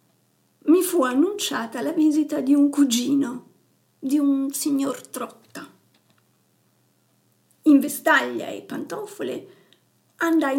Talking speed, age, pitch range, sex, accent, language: 95 wpm, 50-69, 275-320 Hz, female, native, Italian